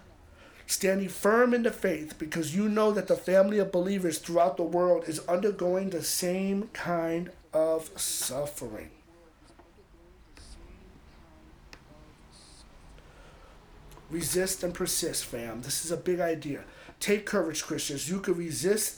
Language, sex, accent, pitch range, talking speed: English, male, American, 150-190 Hz, 120 wpm